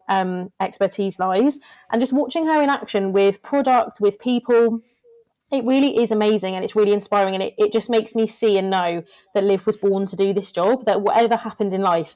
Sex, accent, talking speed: female, British, 210 wpm